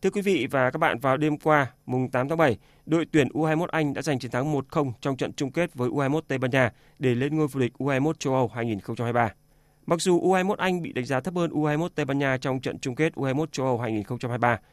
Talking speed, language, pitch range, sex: 250 wpm, Vietnamese, 125-155 Hz, male